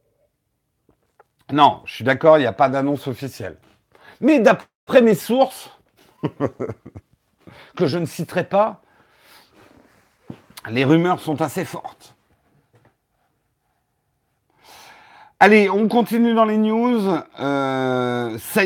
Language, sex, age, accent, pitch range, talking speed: French, male, 50-69, French, 120-170 Hz, 105 wpm